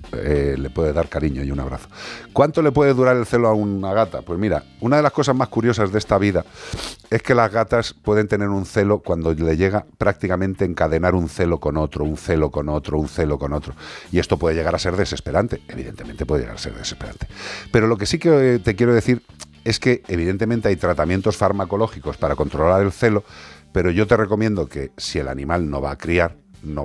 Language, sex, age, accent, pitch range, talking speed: Spanish, male, 50-69, Spanish, 75-115 Hz, 215 wpm